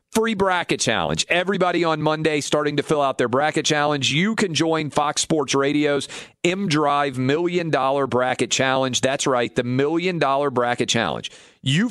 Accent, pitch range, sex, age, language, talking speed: American, 120-160 Hz, male, 40-59, English, 160 wpm